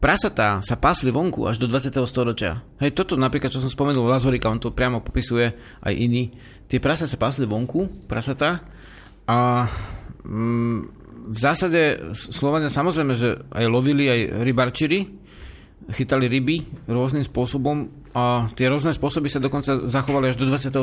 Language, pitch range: Slovak, 115-140 Hz